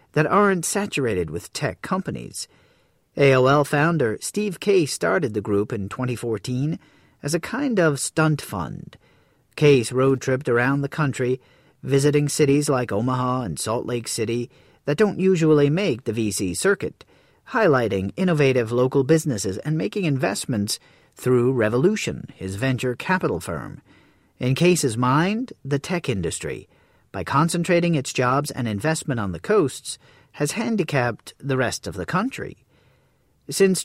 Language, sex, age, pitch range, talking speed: English, male, 40-59, 120-160 Hz, 140 wpm